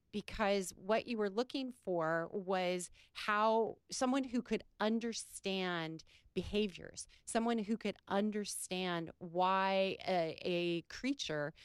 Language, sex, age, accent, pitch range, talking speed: English, female, 30-49, American, 165-210 Hz, 110 wpm